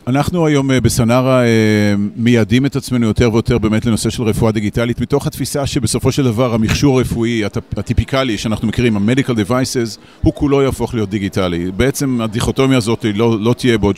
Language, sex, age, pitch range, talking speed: Hebrew, male, 40-59, 105-125 Hz, 170 wpm